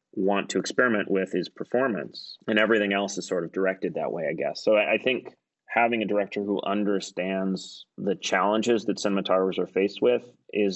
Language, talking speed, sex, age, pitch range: English, 185 wpm, male, 30-49, 95-105 Hz